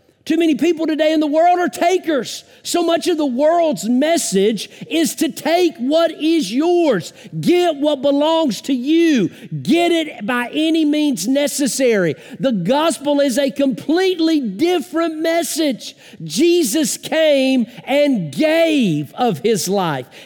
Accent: American